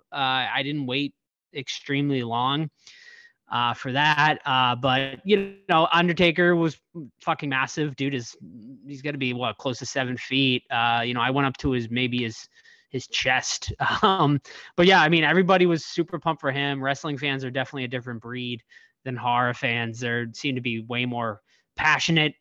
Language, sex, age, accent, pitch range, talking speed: English, male, 20-39, American, 125-155 Hz, 180 wpm